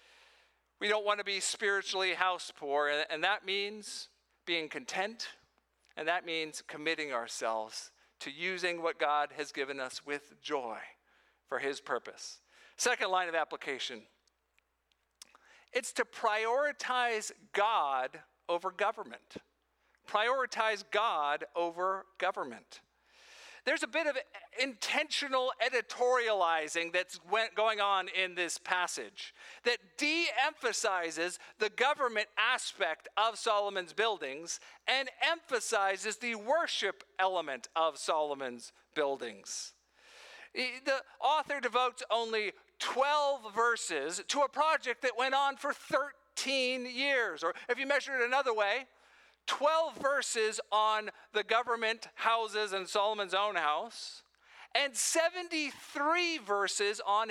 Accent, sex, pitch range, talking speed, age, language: American, male, 185-275 Hz, 115 wpm, 50-69, English